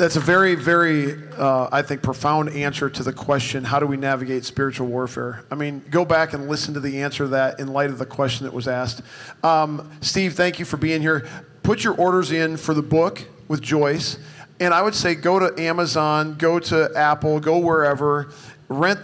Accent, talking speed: American, 205 wpm